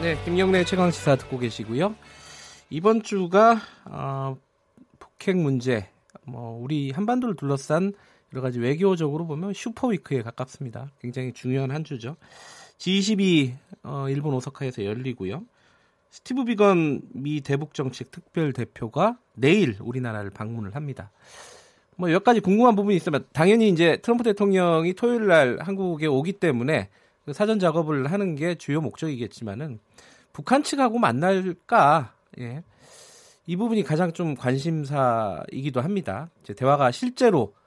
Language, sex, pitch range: Korean, male, 130-200 Hz